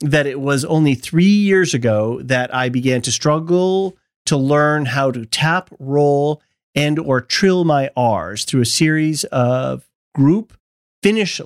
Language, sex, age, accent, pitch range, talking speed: English, male, 30-49, American, 120-150 Hz, 150 wpm